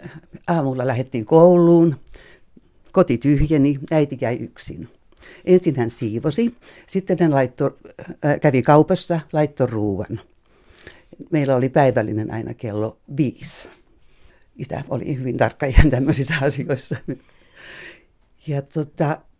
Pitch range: 125-160 Hz